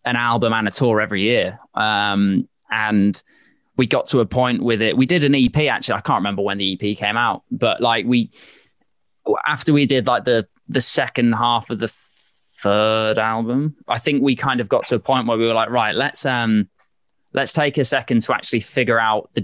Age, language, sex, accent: 20-39, English, male, British